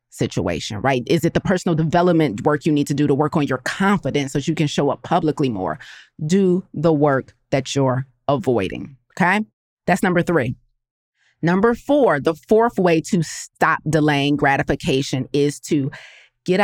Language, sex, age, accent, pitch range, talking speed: English, female, 30-49, American, 145-185 Hz, 165 wpm